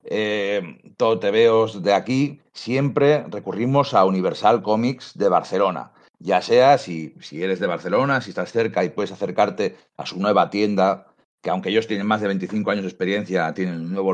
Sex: male